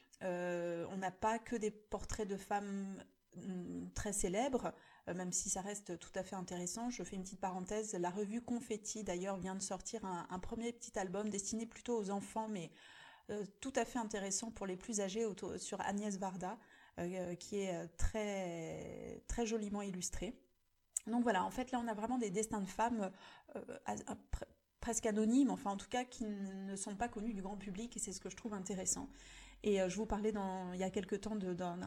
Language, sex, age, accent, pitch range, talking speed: French, female, 30-49, French, 190-220 Hz, 210 wpm